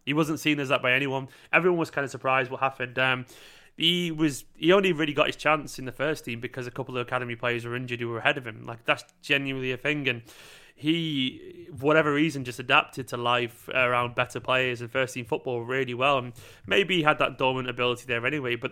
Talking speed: 235 wpm